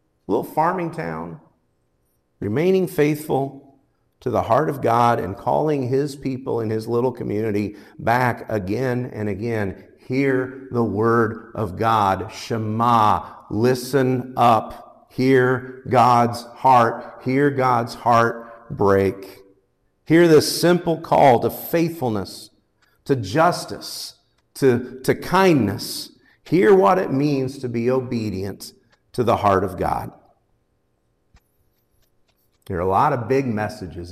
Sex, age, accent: male, 50-69, American